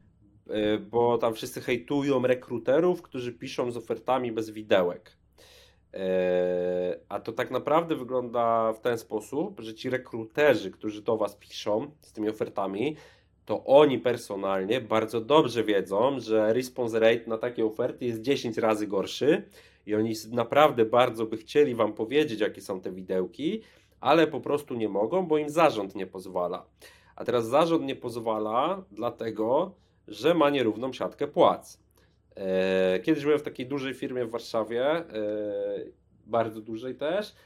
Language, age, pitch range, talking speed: Polish, 30-49, 110-145 Hz, 145 wpm